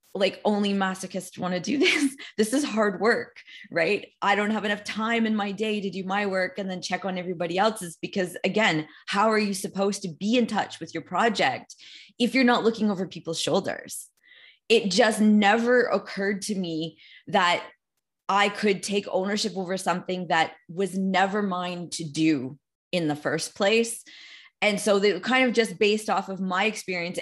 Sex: female